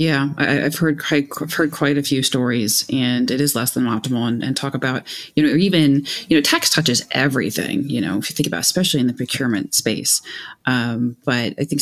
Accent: American